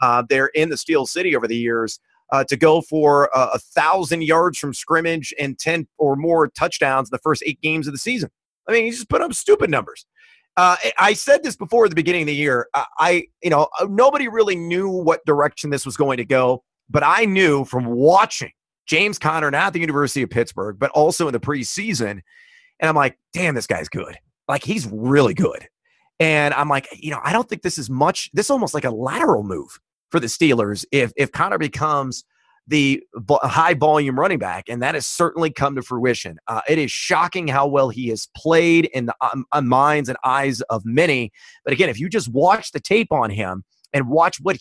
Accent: American